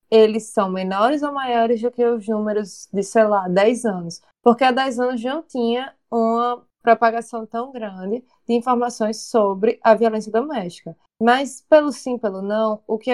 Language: Portuguese